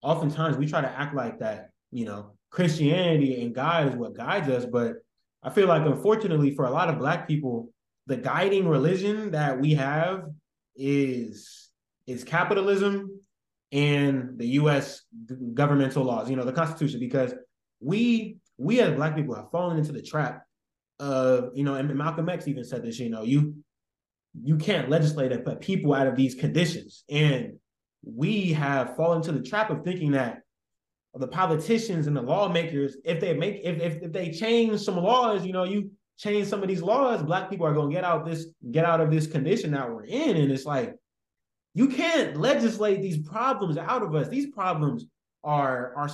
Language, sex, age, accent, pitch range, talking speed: English, male, 20-39, American, 135-180 Hz, 185 wpm